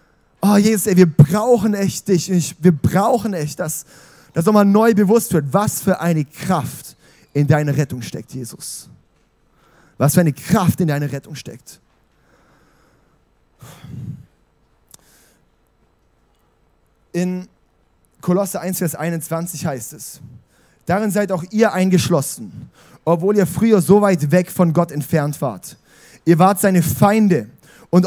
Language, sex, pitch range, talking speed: German, male, 150-180 Hz, 130 wpm